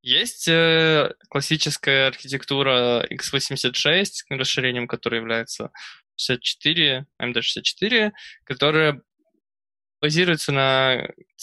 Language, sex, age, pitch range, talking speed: Russian, male, 20-39, 120-150 Hz, 70 wpm